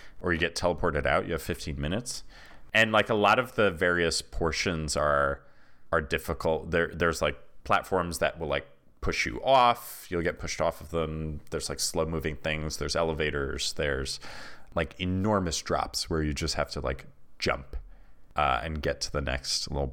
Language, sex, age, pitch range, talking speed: English, male, 30-49, 70-85 Hz, 185 wpm